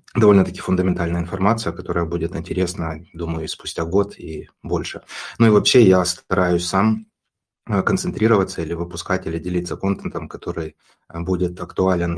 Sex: male